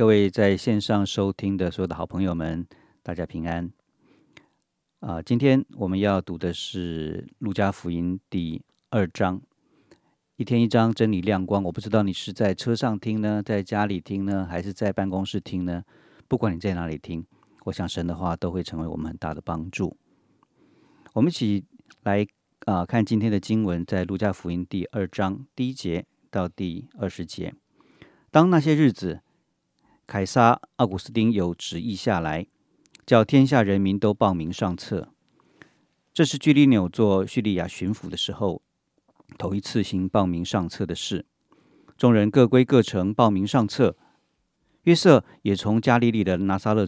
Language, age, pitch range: Chinese, 50-69, 90-110 Hz